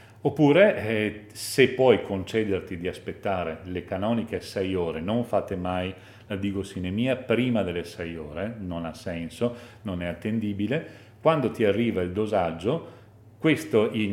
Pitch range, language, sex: 90-115 Hz, Italian, male